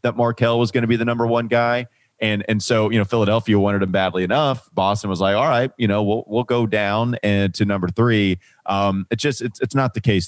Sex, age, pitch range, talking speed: male, 30-49, 90-110 Hz, 250 wpm